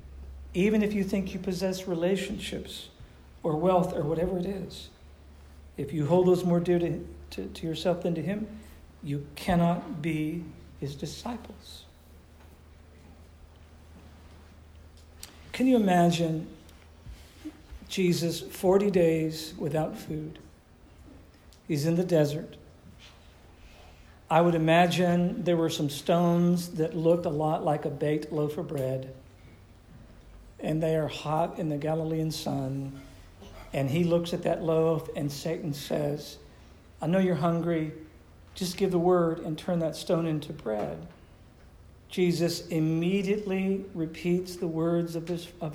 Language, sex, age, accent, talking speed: English, male, 50-69, American, 130 wpm